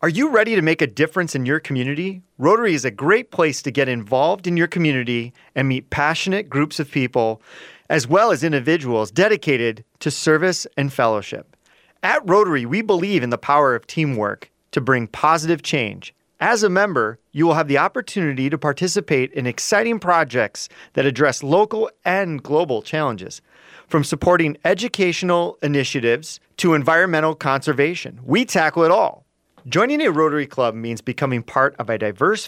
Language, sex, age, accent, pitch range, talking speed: English, male, 30-49, American, 130-175 Hz, 165 wpm